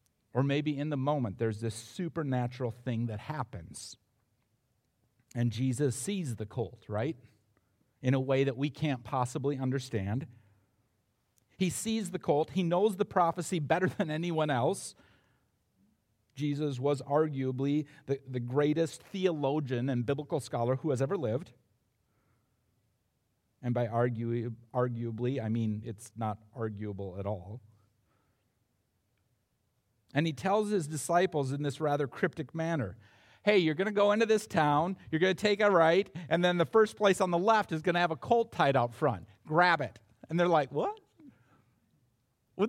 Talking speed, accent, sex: 155 wpm, American, male